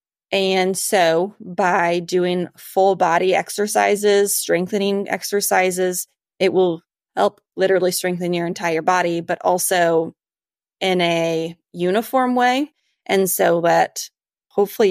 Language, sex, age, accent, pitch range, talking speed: English, female, 20-39, American, 175-200 Hz, 110 wpm